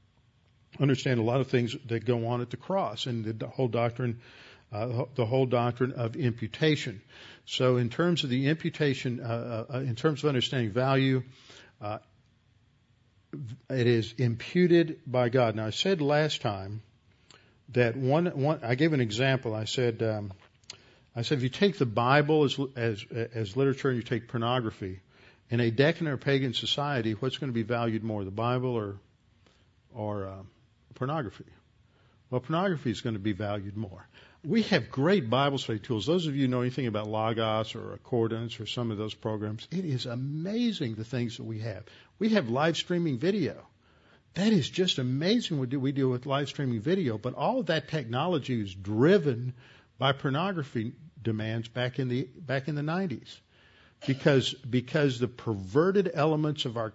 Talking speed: 175 wpm